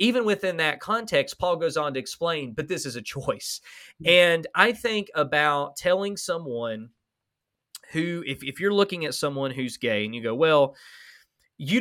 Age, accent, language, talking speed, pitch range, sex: 30-49, American, English, 175 wpm, 135-180 Hz, male